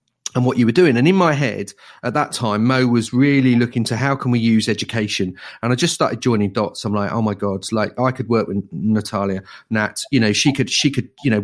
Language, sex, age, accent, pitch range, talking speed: English, male, 40-59, British, 110-140 Hz, 250 wpm